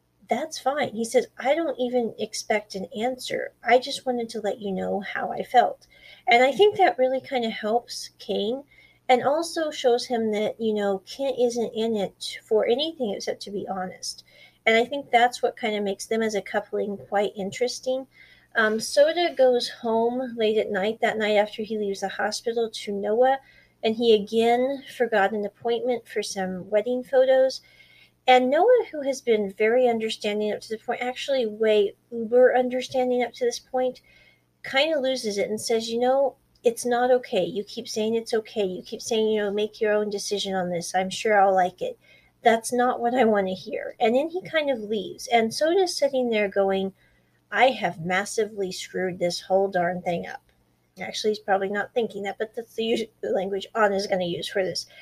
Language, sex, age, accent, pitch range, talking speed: English, female, 40-59, American, 205-250 Hz, 195 wpm